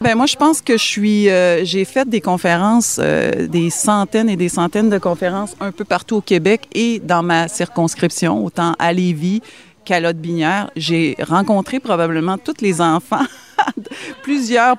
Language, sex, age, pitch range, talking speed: French, female, 30-49, 165-205 Hz, 170 wpm